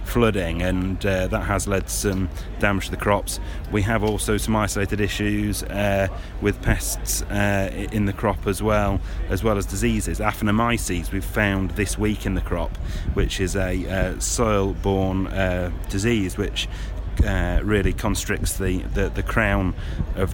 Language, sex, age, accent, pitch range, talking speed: English, male, 30-49, British, 90-105 Hz, 165 wpm